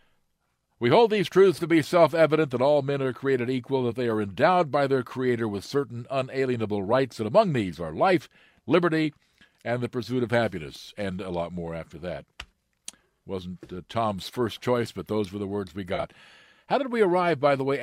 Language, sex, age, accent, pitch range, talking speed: English, male, 60-79, American, 105-140 Hz, 200 wpm